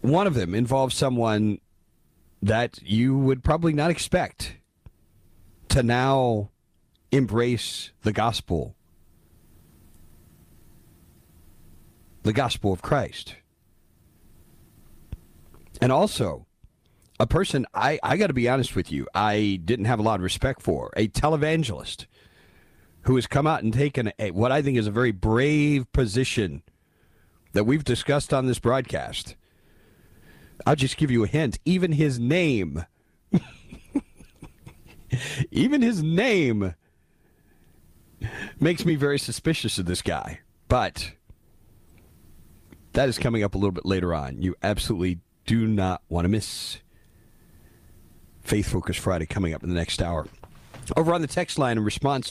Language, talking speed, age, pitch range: English, 130 wpm, 40-59, 85-130 Hz